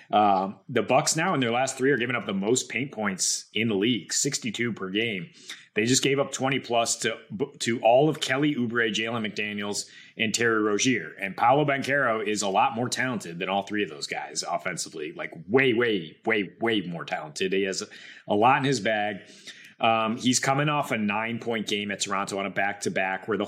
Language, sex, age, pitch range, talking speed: English, male, 30-49, 100-120 Hz, 205 wpm